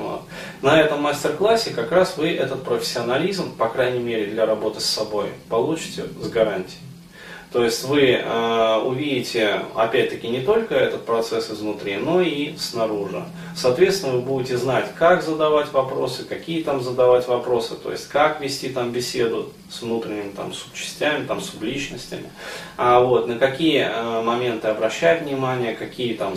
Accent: native